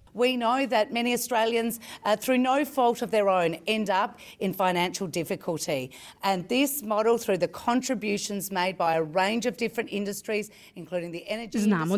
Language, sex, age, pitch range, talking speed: Croatian, female, 40-59, 170-240 Hz, 165 wpm